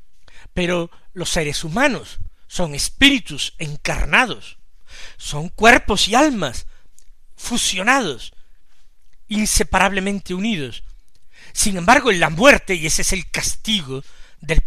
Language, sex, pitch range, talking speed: Spanish, male, 145-205 Hz, 100 wpm